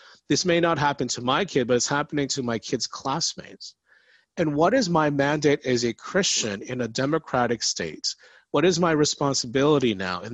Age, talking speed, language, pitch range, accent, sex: 40-59, 185 wpm, English, 120-150 Hz, American, male